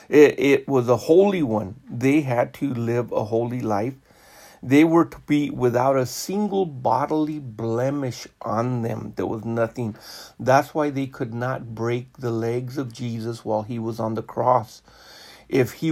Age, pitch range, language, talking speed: 50-69, 115-135 Hz, English, 170 wpm